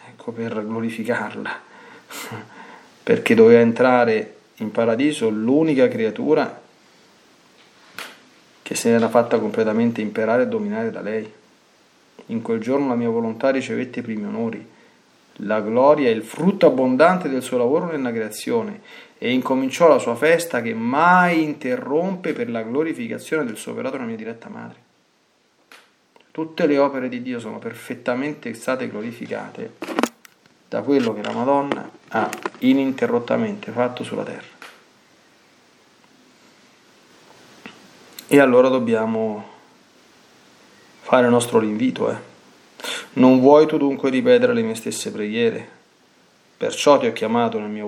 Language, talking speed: Italian, 125 wpm